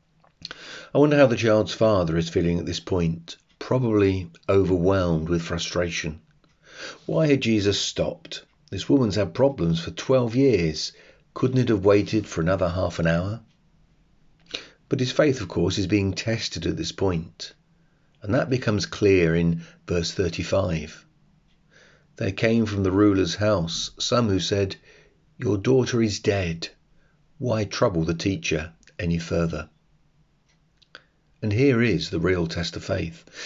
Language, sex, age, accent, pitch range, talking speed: English, male, 40-59, British, 90-130 Hz, 145 wpm